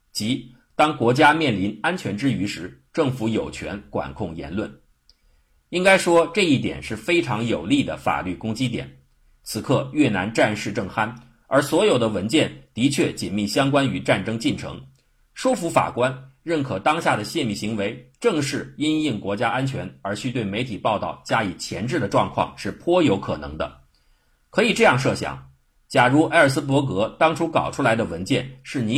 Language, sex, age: Chinese, male, 50-69